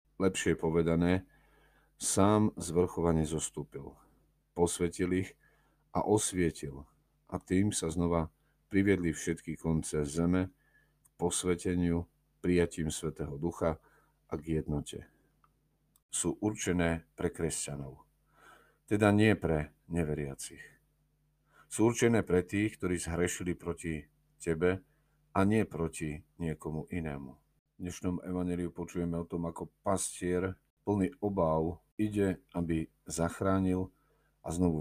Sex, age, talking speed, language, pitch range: male, 50-69, 105 wpm, Slovak, 80-95 Hz